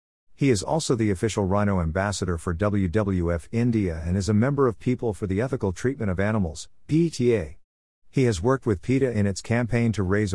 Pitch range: 85-115 Hz